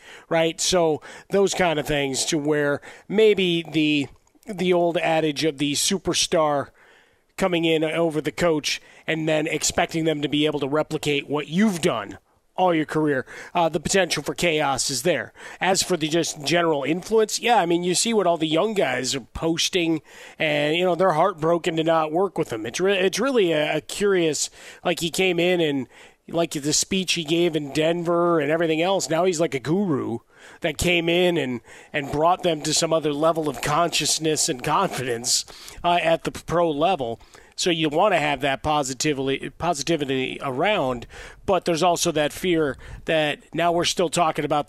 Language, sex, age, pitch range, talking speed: English, male, 30-49, 150-175 Hz, 185 wpm